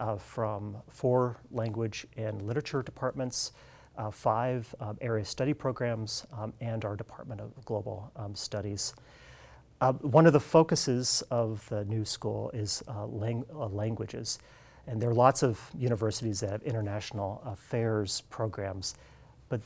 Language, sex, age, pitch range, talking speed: English, male, 40-59, 105-125 Hz, 140 wpm